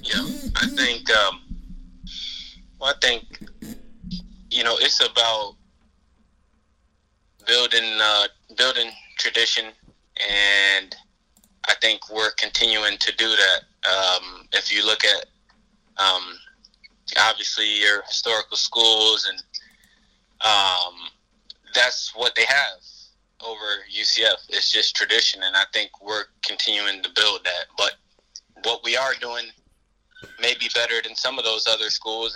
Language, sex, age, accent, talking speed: English, male, 20-39, American, 120 wpm